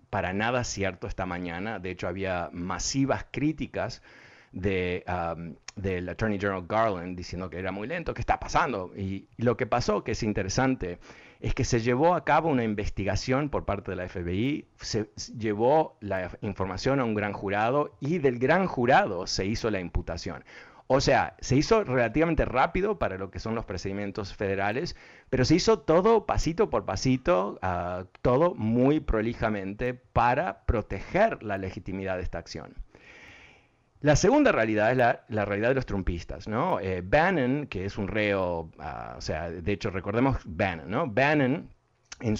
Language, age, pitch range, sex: Spanish, 50-69, 95-125 Hz, male